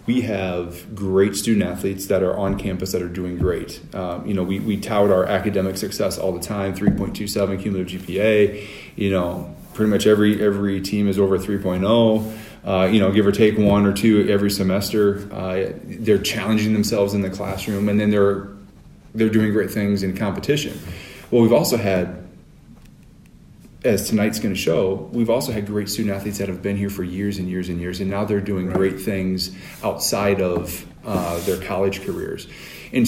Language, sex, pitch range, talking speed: English, male, 95-105 Hz, 190 wpm